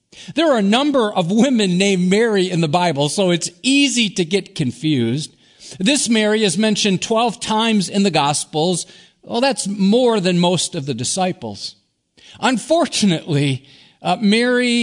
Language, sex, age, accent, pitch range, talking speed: English, male, 50-69, American, 145-205 Hz, 150 wpm